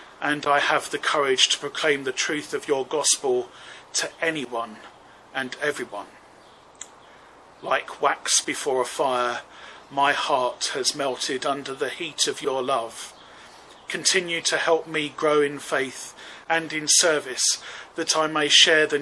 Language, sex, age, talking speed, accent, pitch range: English, male, 40-59, 145 wpm, British, 150-175 Hz